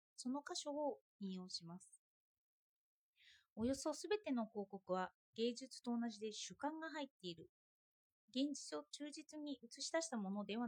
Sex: female